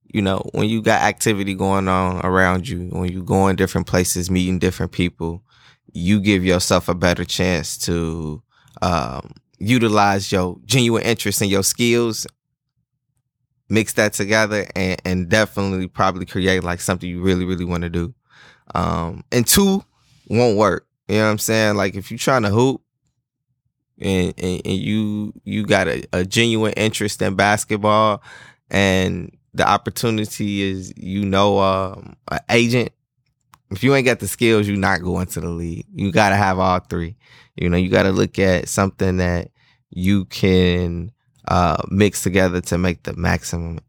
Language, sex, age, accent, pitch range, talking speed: English, male, 10-29, American, 90-115 Hz, 165 wpm